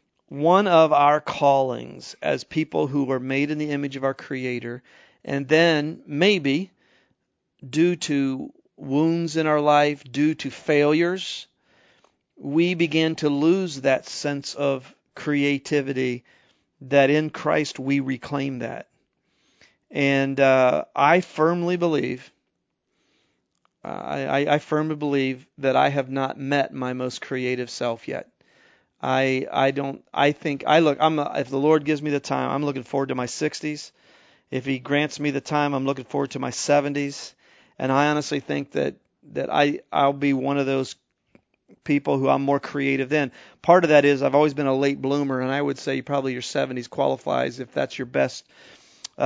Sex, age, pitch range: male, 40-59, 135-150 Hz